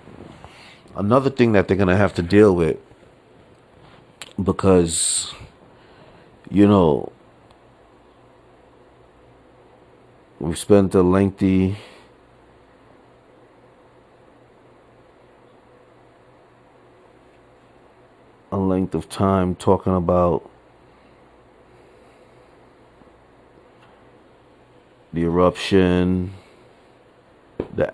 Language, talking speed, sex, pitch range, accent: English, 55 wpm, male, 90-100 Hz, American